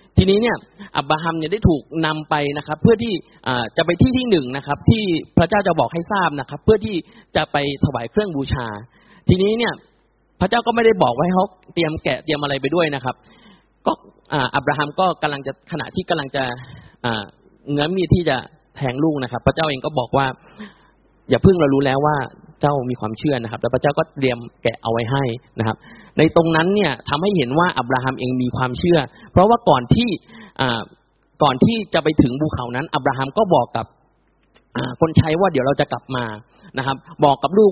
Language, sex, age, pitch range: Thai, male, 20-39, 130-180 Hz